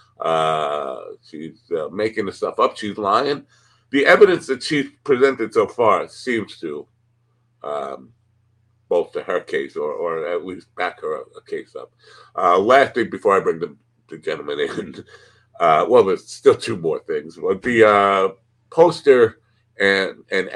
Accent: American